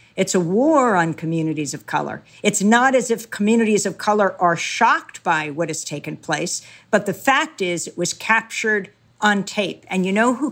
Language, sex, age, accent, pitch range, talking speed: English, female, 50-69, American, 180-255 Hz, 195 wpm